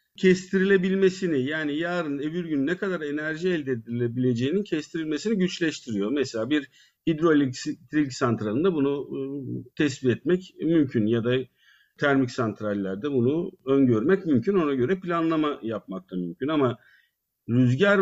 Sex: male